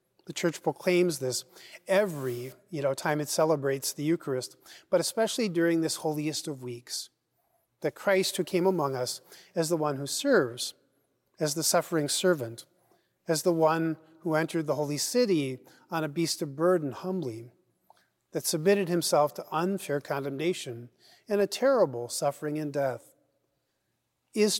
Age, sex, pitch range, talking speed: 40-59, male, 140-175 Hz, 145 wpm